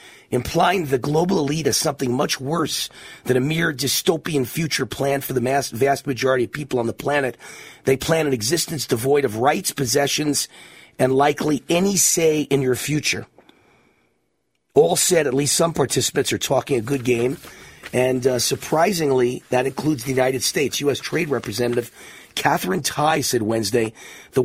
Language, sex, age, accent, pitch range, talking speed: English, male, 40-59, American, 130-175 Hz, 160 wpm